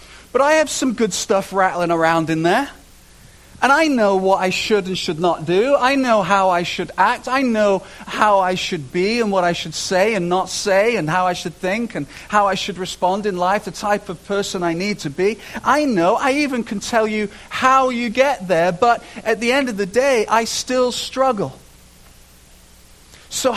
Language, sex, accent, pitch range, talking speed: English, male, British, 180-230 Hz, 210 wpm